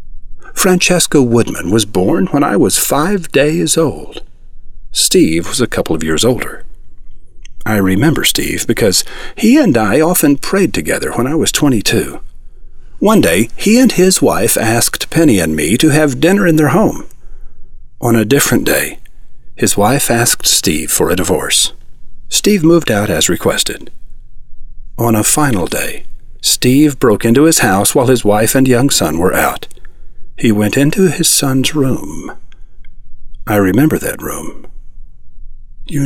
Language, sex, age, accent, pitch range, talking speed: English, male, 50-69, American, 105-155 Hz, 150 wpm